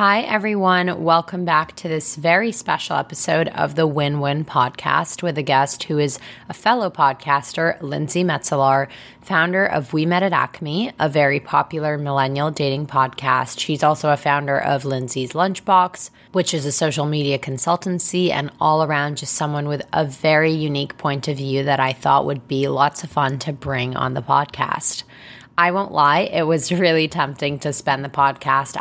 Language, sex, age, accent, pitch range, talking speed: English, female, 20-39, American, 140-165 Hz, 175 wpm